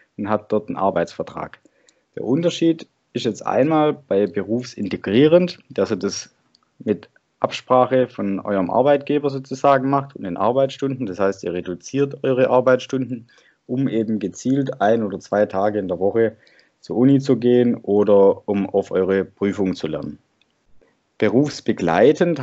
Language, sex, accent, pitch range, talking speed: German, male, German, 100-130 Hz, 140 wpm